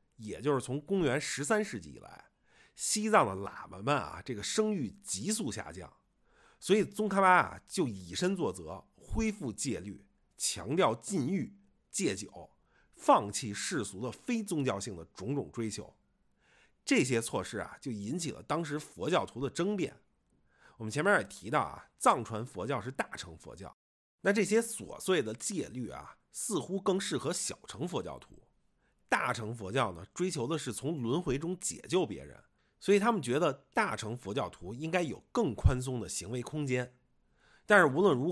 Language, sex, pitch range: Chinese, male, 115-195 Hz